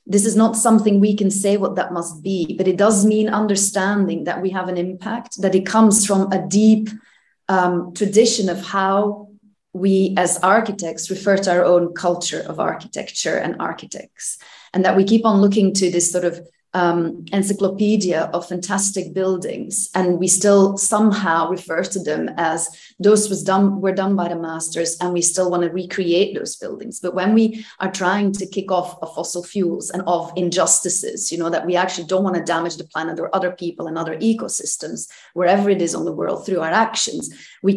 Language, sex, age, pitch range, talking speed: English, female, 30-49, 175-200 Hz, 190 wpm